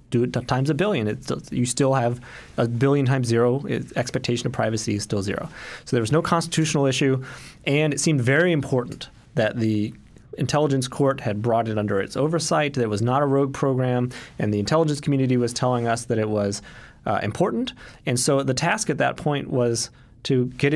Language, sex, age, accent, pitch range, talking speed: English, male, 30-49, American, 110-140 Hz, 200 wpm